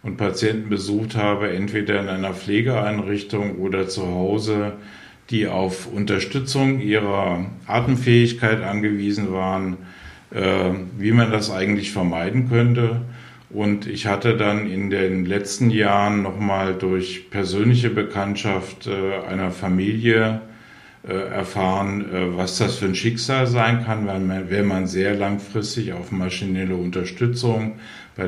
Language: German